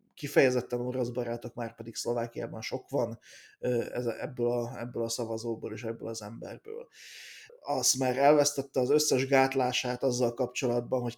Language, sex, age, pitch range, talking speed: Hungarian, male, 30-49, 120-135 Hz, 130 wpm